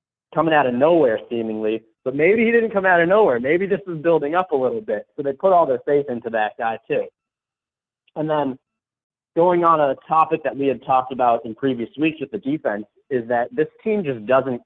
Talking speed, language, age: 220 wpm, English, 30-49